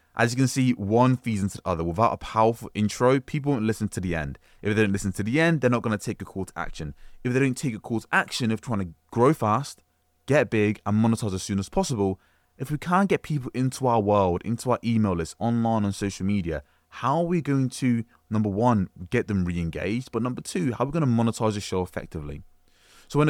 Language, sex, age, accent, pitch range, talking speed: English, male, 20-39, British, 85-120 Hz, 245 wpm